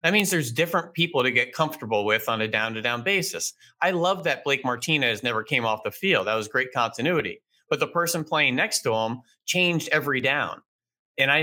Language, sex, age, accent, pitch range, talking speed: English, male, 30-49, American, 120-155 Hz, 205 wpm